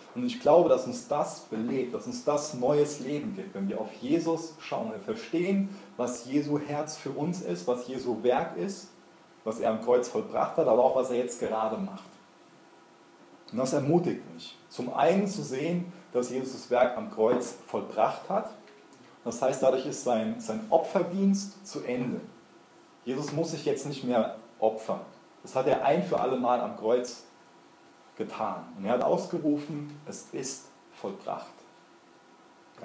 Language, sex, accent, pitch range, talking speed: German, male, German, 125-175 Hz, 170 wpm